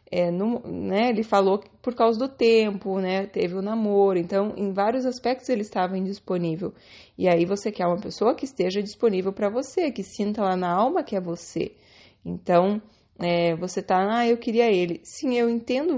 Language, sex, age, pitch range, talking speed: Portuguese, female, 20-39, 190-225 Hz, 195 wpm